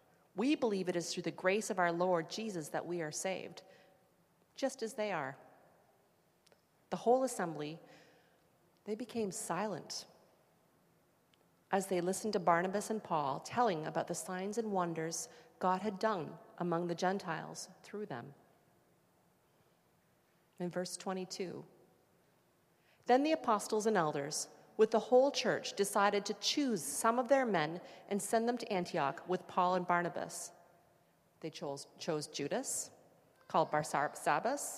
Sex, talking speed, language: female, 140 wpm, English